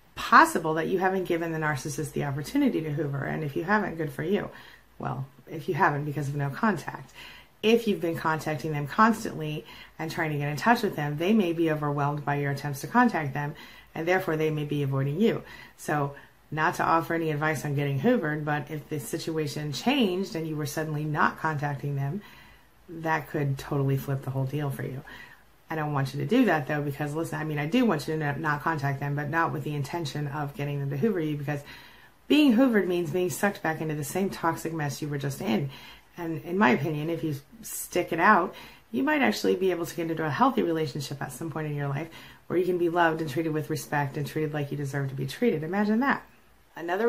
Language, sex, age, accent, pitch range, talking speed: English, female, 30-49, American, 145-170 Hz, 230 wpm